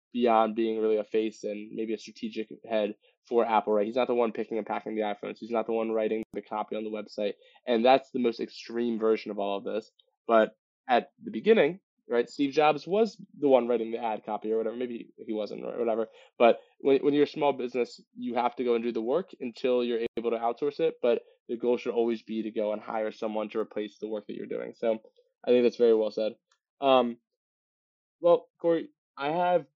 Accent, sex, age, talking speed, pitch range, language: American, male, 20-39, 230 wpm, 115-145 Hz, English